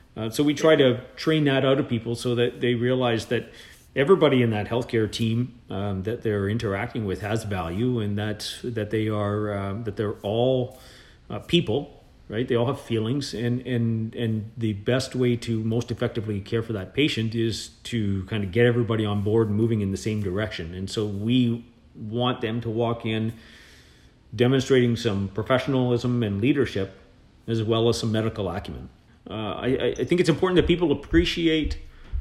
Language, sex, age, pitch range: English, male, 40-59, 105-125 Hz